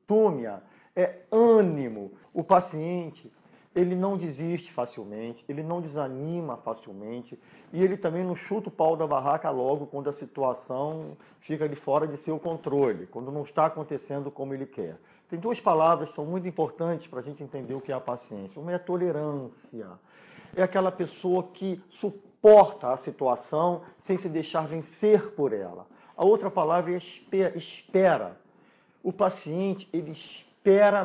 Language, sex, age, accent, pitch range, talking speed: Portuguese, male, 40-59, Brazilian, 145-195 Hz, 155 wpm